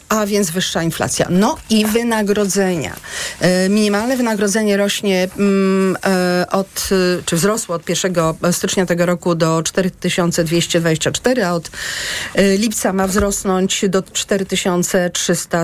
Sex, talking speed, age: female, 105 wpm, 40-59